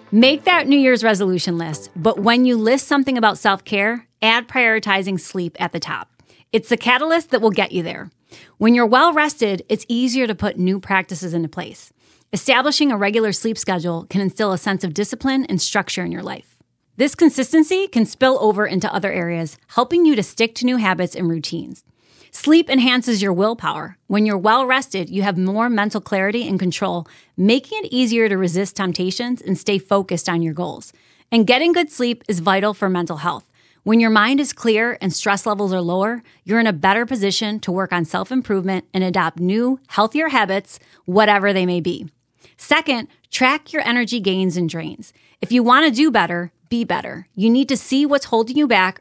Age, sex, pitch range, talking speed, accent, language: 30-49, female, 185-250 Hz, 195 wpm, American, English